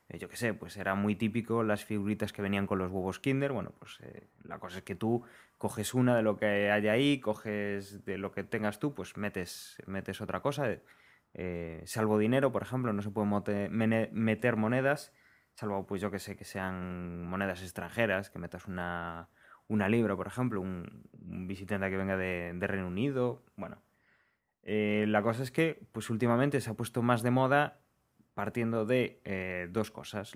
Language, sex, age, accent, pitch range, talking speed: English, male, 20-39, Spanish, 95-115 Hz, 190 wpm